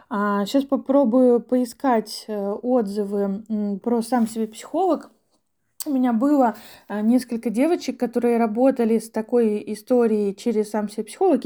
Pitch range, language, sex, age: 220-275 Hz, Russian, female, 20-39